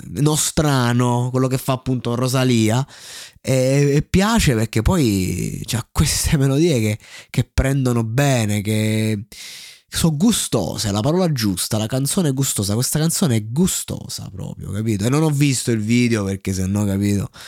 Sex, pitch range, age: male, 100-130 Hz, 20-39